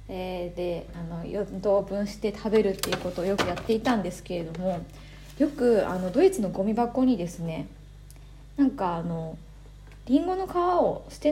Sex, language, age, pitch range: female, Japanese, 20-39, 185-270 Hz